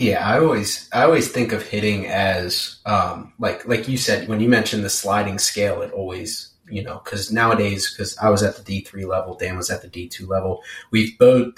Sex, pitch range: male, 100-115 Hz